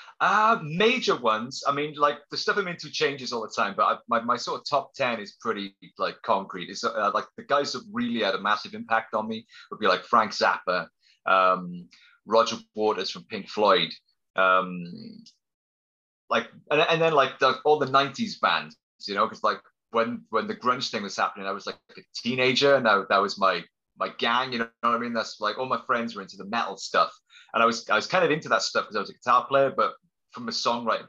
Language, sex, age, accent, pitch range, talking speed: English, male, 30-49, British, 105-150 Hz, 230 wpm